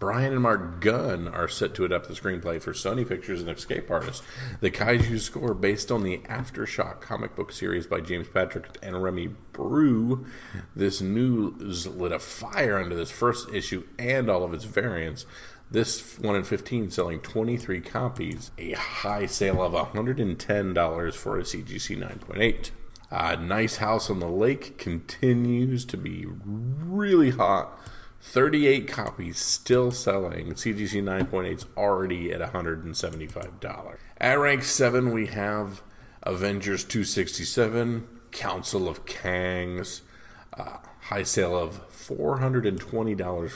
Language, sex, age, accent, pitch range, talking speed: English, male, 40-59, American, 90-120 Hz, 135 wpm